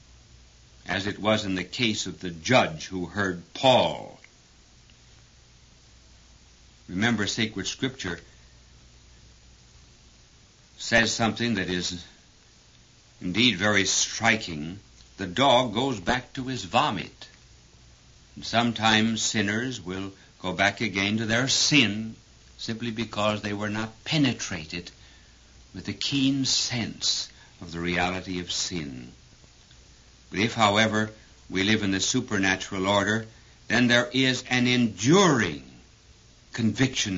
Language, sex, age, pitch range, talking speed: English, male, 60-79, 85-115 Hz, 110 wpm